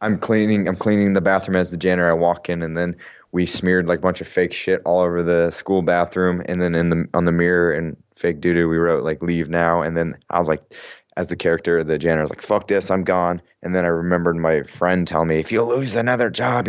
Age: 20-39